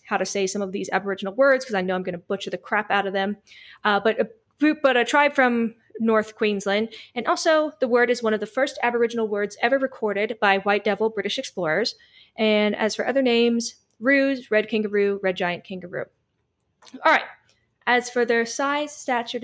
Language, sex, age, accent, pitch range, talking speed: English, female, 20-39, American, 200-250 Hz, 200 wpm